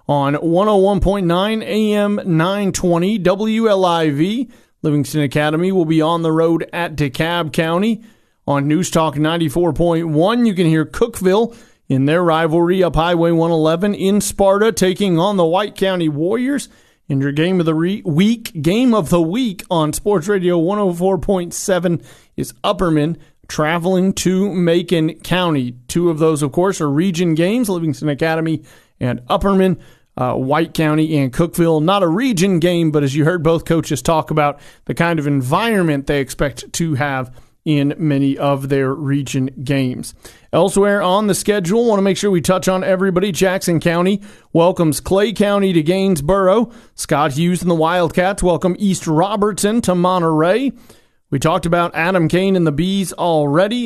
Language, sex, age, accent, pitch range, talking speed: English, male, 40-59, American, 155-195 Hz, 155 wpm